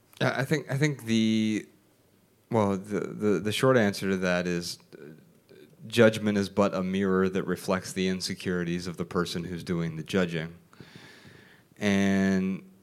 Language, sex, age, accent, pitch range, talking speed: English, male, 30-49, American, 95-115 Hz, 145 wpm